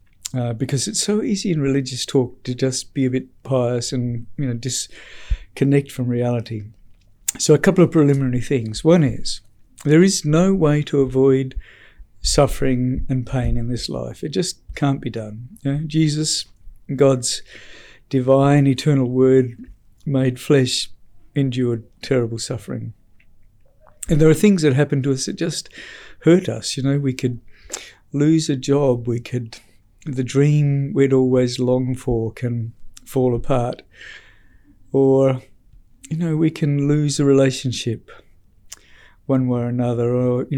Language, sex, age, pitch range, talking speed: English, male, 60-79, 120-145 Hz, 150 wpm